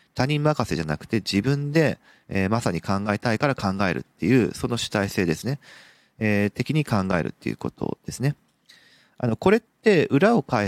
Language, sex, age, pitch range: Japanese, male, 40-59, 100-145 Hz